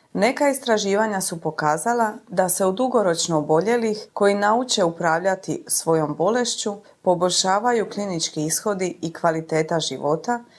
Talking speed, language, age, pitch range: 115 wpm, Croatian, 30-49, 165-220 Hz